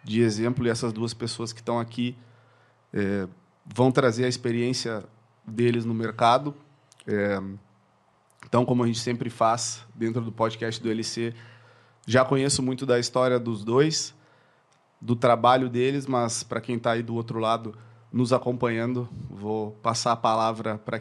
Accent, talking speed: Brazilian, 155 wpm